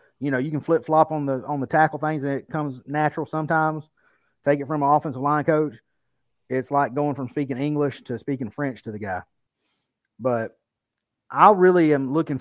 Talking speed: 200 wpm